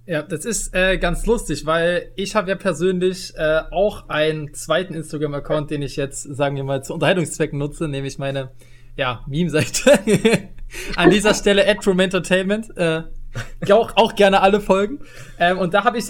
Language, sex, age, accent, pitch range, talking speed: German, male, 20-39, German, 150-195 Hz, 170 wpm